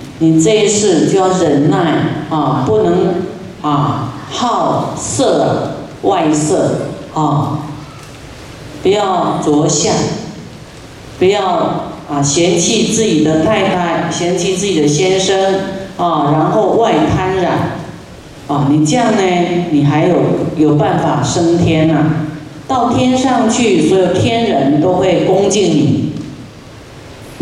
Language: Chinese